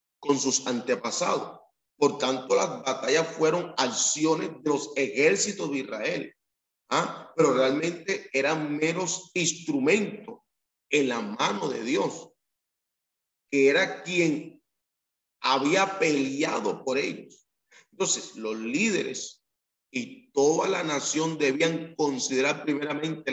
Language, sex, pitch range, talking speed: Spanish, male, 130-165 Hz, 110 wpm